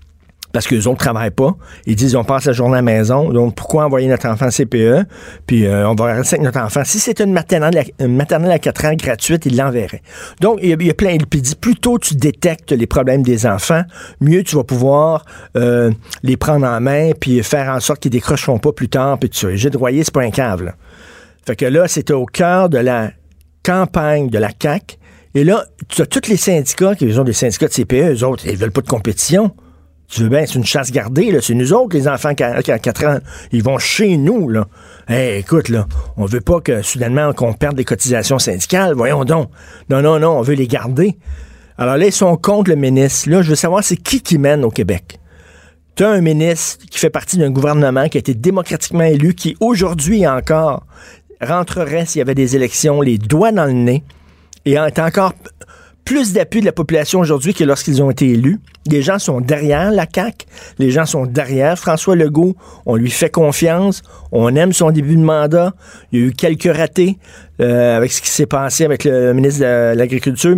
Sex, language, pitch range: male, French, 120-165 Hz